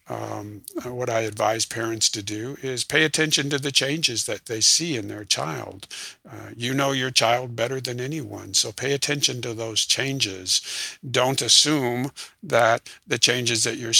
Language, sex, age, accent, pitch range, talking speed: English, male, 60-79, American, 115-130 Hz, 170 wpm